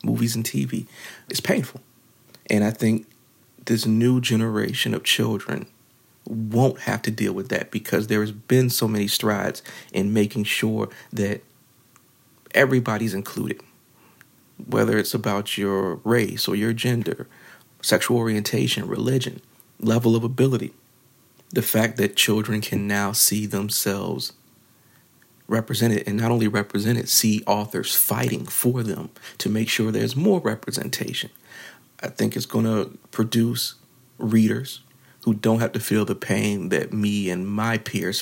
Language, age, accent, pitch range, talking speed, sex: English, 40-59, American, 105-120 Hz, 140 wpm, male